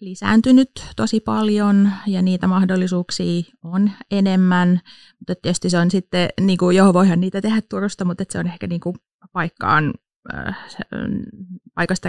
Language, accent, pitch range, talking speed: Finnish, native, 170-200 Hz, 145 wpm